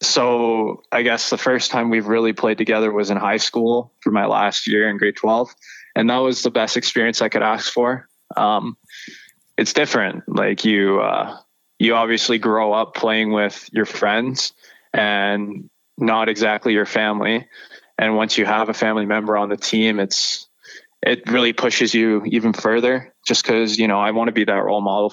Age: 20-39